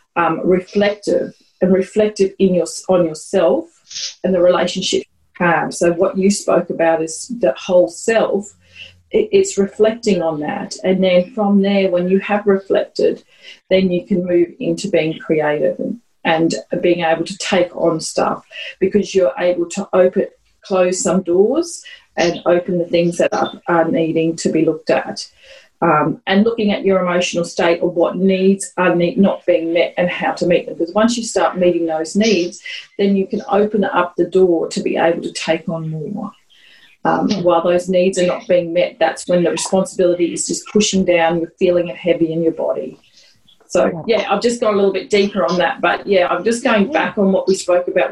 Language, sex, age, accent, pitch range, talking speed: English, female, 40-59, Australian, 170-200 Hz, 190 wpm